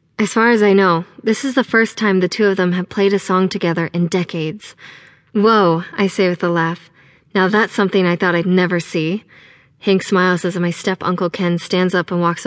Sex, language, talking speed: female, English, 215 wpm